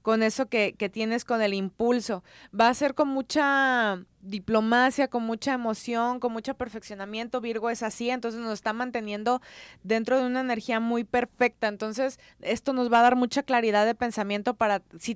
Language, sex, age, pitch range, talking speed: Spanish, female, 20-39, 210-255 Hz, 180 wpm